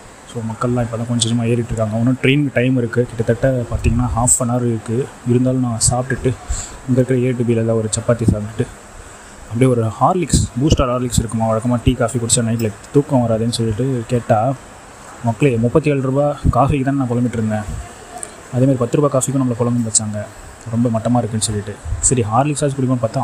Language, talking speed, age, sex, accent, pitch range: Tamil, 170 wpm, 20-39, male, native, 110-130 Hz